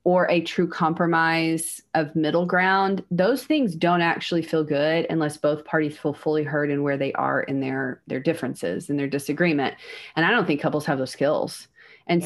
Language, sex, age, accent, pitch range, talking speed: English, female, 30-49, American, 155-190 Hz, 190 wpm